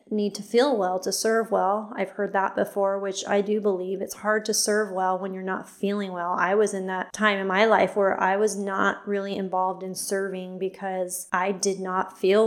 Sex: female